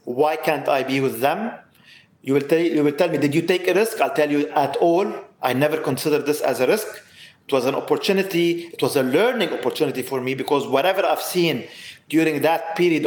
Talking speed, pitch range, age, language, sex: 210 wpm, 145-175 Hz, 40-59, English, male